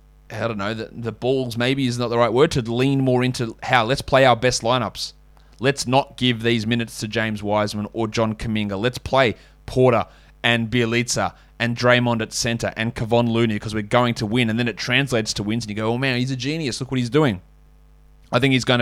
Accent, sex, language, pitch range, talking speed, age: Australian, male, English, 110-145 Hz, 230 wpm, 20-39